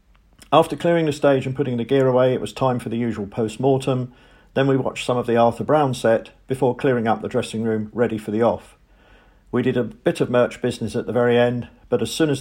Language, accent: English, British